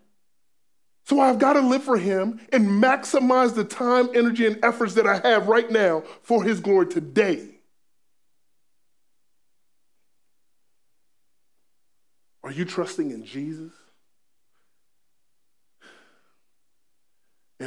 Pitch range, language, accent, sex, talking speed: 180-230 Hz, English, American, male, 95 wpm